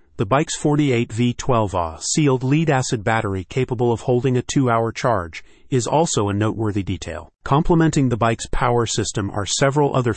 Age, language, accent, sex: 40-59, English, American, male